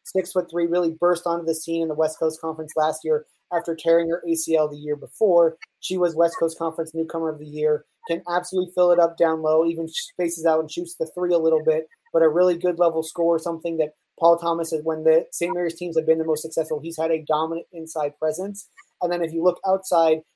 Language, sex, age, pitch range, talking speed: English, male, 30-49, 160-175 Hz, 240 wpm